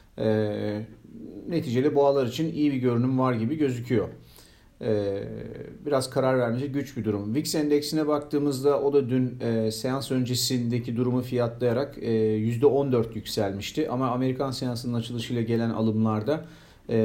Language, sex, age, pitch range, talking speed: Turkish, male, 40-59, 110-145 Hz, 135 wpm